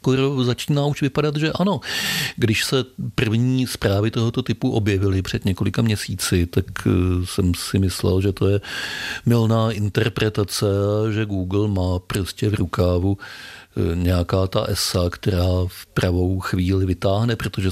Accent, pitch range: native, 90-110 Hz